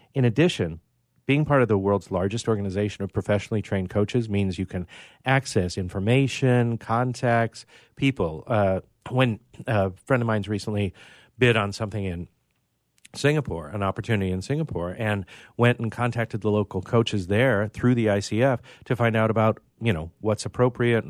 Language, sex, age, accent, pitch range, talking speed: English, male, 40-59, American, 95-125 Hz, 165 wpm